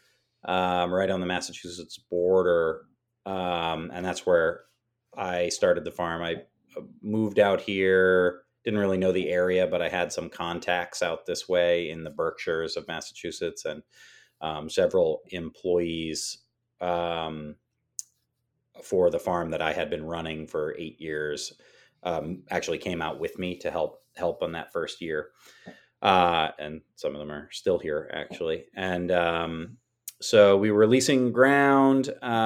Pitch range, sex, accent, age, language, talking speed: 90-120 Hz, male, American, 30-49, English, 150 wpm